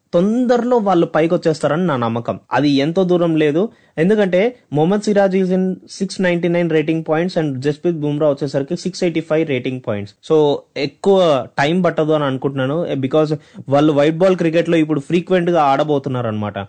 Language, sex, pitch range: Telugu, male, 135-175 Hz